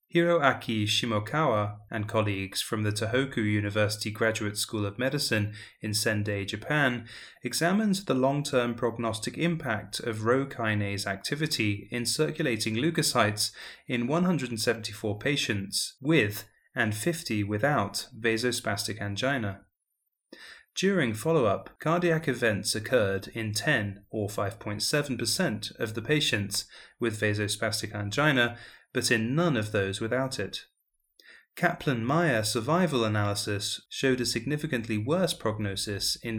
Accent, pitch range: British, 105-135 Hz